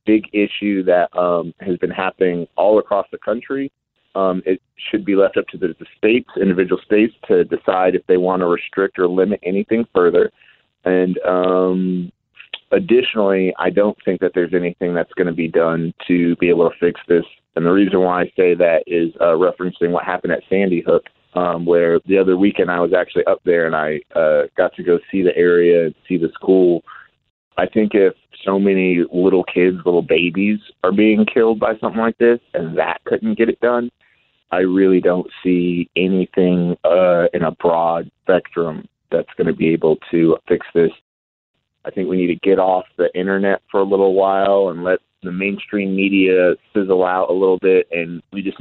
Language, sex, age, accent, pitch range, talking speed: English, male, 30-49, American, 90-100 Hz, 195 wpm